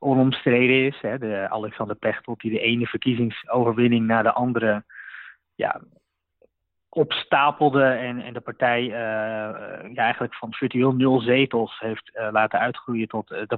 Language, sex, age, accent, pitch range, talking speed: Dutch, male, 20-39, Dutch, 110-140 Hz, 140 wpm